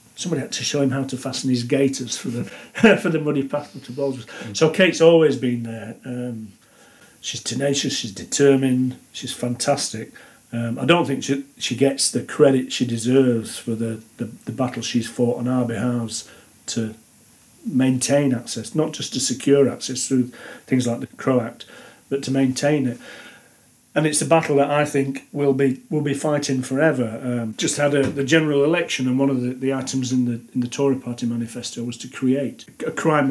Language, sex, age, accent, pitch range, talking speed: English, male, 40-59, British, 125-145 Hz, 195 wpm